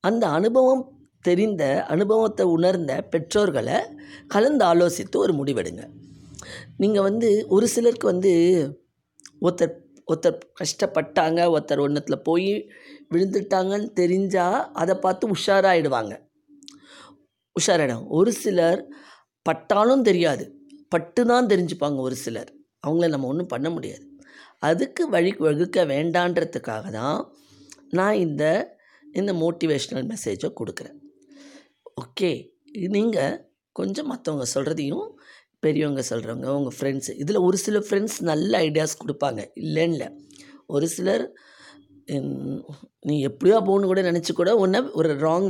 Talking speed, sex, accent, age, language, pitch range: 105 wpm, female, native, 20-39, Tamil, 155-220 Hz